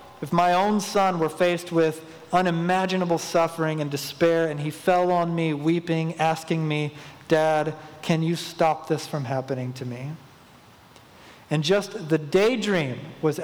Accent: American